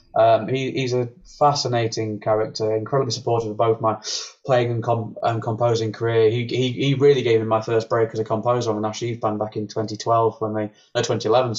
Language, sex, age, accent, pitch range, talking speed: English, male, 20-39, British, 110-125 Hz, 210 wpm